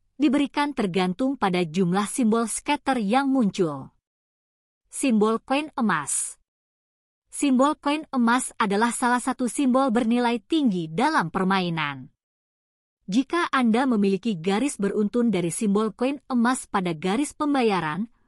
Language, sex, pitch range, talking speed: Indonesian, female, 200-265 Hz, 110 wpm